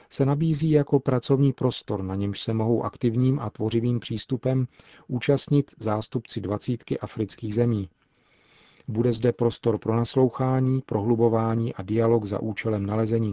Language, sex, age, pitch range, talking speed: Czech, male, 40-59, 105-120 Hz, 130 wpm